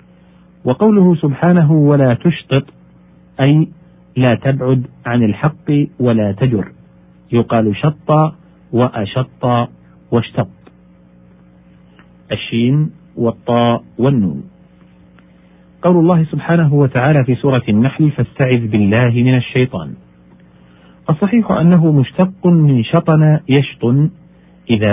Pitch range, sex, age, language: 95-145 Hz, male, 50-69, Arabic